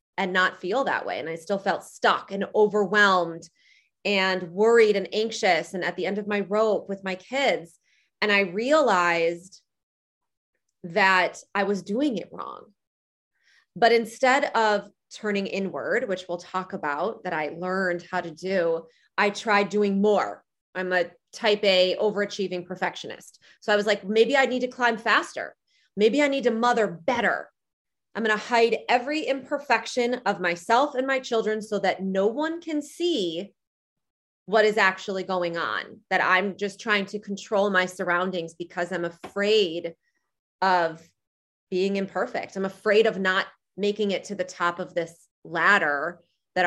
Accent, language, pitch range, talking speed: American, English, 180-215 Hz, 160 wpm